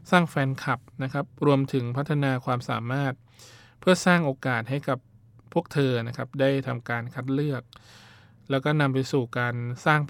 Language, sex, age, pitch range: Thai, male, 20-39, 120-140 Hz